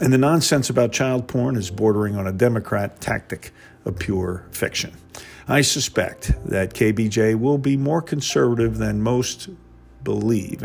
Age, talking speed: 50-69, 145 wpm